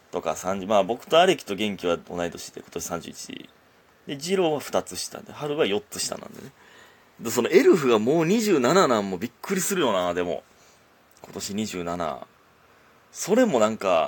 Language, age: Japanese, 30-49